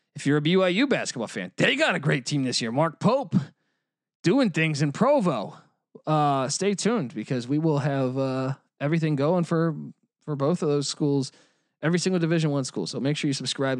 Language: English